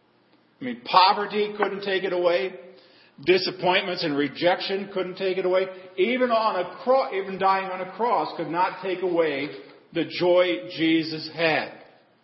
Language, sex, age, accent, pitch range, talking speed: English, male, 50-69, American, 160-220 Hz, 150 wpm